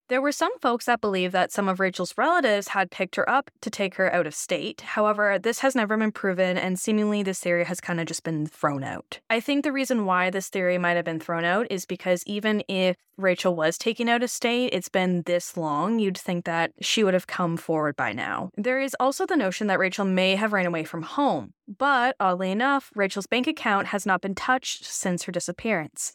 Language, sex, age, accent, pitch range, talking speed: English, female, 10-29, American, 180-235 Hz, 230 wpm